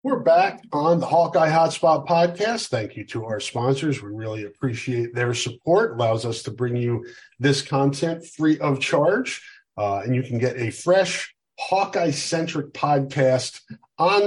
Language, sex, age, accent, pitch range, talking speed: English, male, 40-59, American, 115-145 Hz, 165 wpm